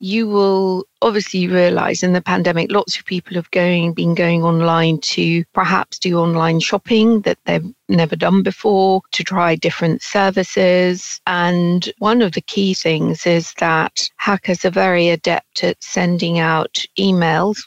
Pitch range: 165-190 Hz